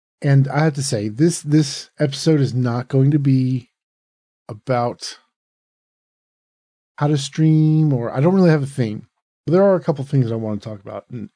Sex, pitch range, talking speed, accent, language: male, 115-145 Hz, 195 wpm, American, English